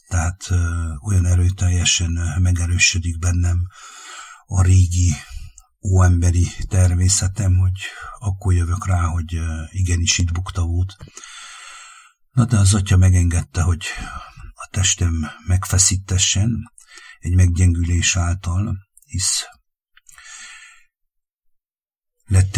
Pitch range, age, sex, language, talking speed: 85-95 Hz, 50-69, male, English, 80 wpm